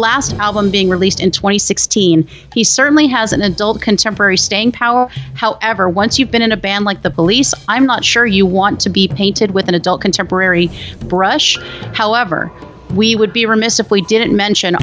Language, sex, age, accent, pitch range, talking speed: English, female, 30-49, American, 180-220 Hz, 185 wpm